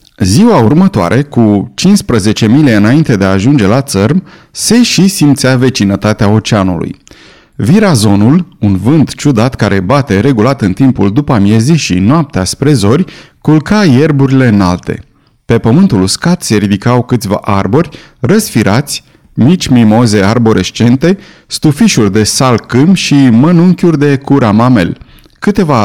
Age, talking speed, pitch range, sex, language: 30-49, 125 wpm, 110-155 Hz, male, Romanian